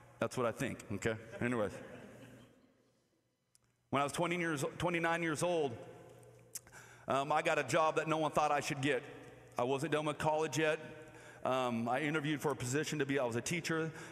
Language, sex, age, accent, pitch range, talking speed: English, male, 40-59, American, 130-155 Hz, 185 wpm